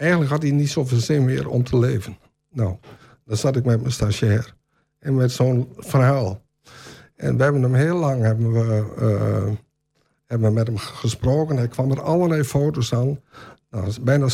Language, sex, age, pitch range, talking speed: Dutch, male, 60-79, 120-150 Hz, 175 wpm